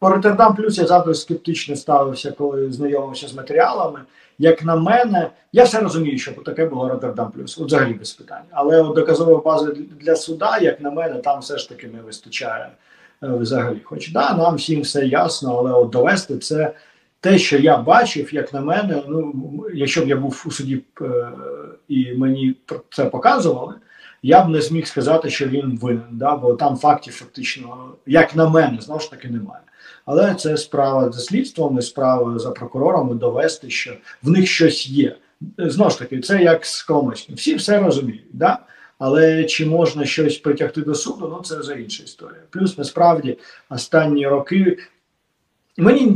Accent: native